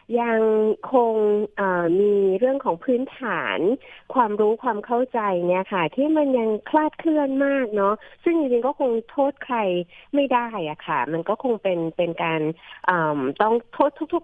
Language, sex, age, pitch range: Thai, female, 30-49, 175-230 Hz